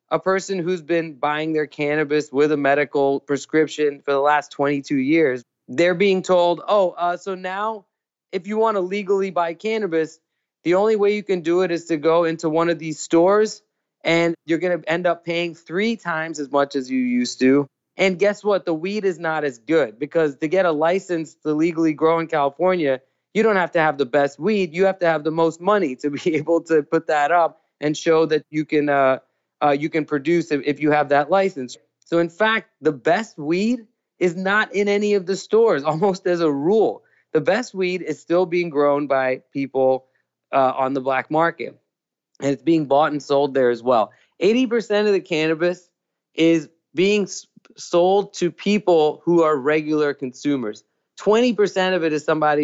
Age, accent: 20-39, American